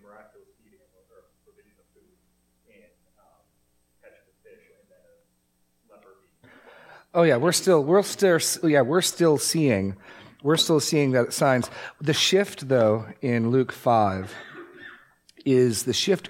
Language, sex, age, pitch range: English, male, 40-59, 110-140 Hz